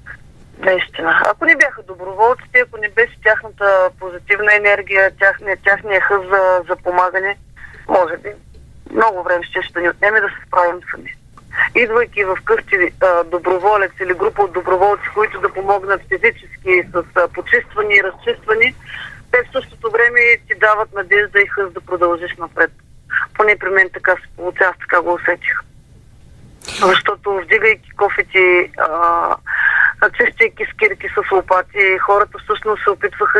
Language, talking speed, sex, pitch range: Bulgarian, 145 wpm, female, 185-255 Hz